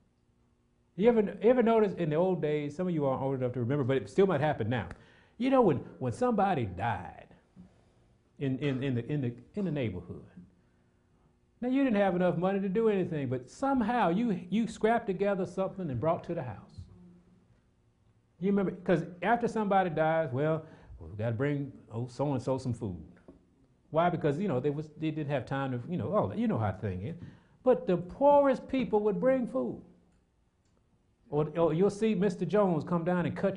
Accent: American